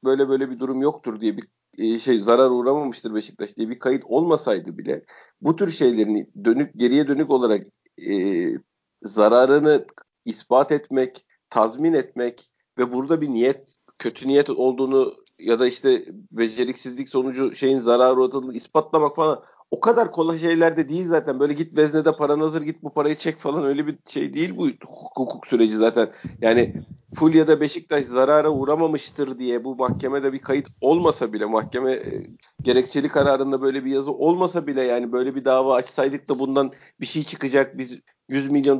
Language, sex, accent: Turkish, male, native